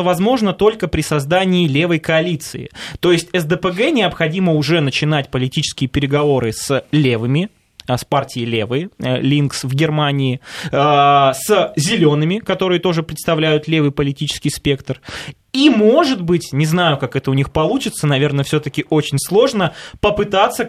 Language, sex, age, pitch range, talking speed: Russian, male, 20-39, 140-180 Hz, 130 wpm